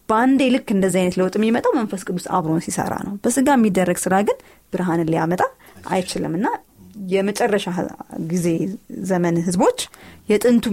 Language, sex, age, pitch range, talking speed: Amharic, female, 20-39, 180-230 Hz, 135 wpm